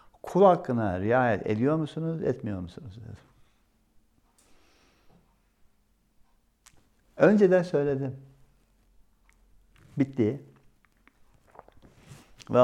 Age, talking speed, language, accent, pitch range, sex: 60-79, 60 wpm, Turkish, native, 90-130 Hz, male